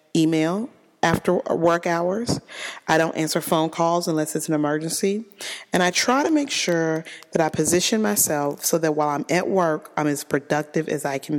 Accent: American